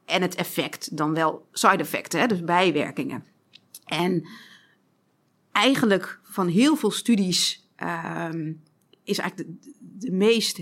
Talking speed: 105 wpm